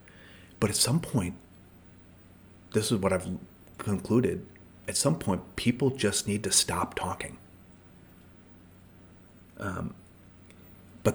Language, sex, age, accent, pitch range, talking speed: English, male, 30-49, American, 90-100 Hz, 110 wpm